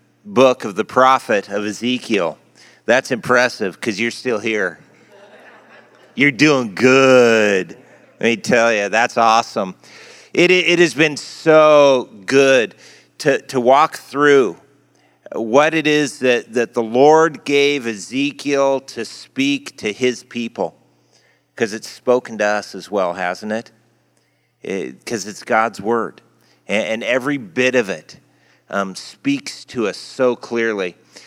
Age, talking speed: 40-59, 140 wpm